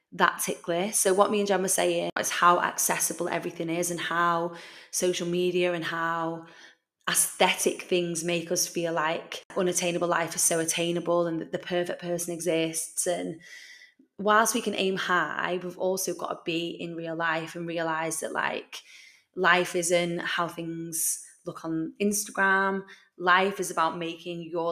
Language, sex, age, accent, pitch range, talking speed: English, female, 20-39, British, 170-195 Hz, 165 wpm